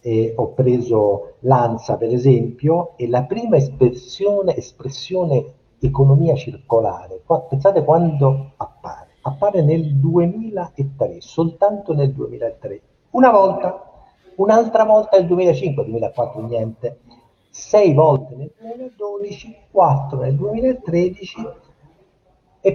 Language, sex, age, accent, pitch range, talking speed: Italian, male, 50-69, native, 120-165 Hz, 100 wpm